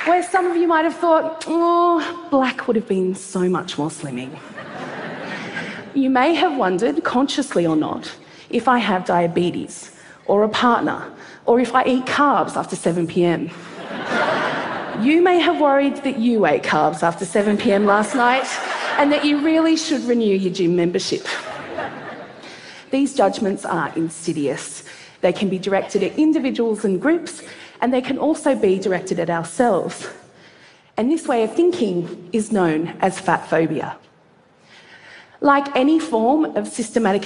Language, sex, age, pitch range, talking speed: English, female, 30-49, 180-275 Hz, 155 wpm